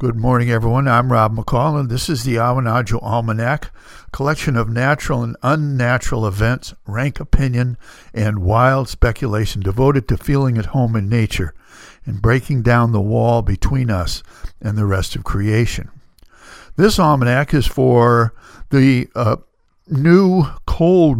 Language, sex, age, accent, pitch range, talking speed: English, male, 60-79, American, 110-140 Hz, 140 wpm